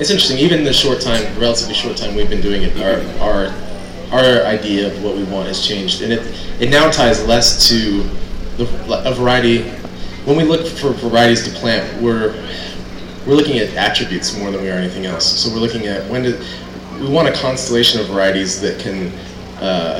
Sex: male